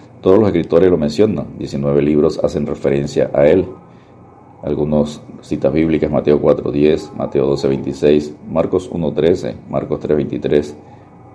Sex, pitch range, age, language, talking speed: male, 75-80 Hz, 50-69, Spanish, 115 wpm